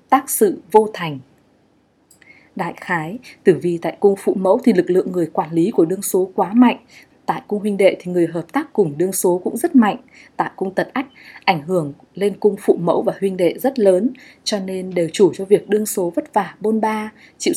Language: Vietnamese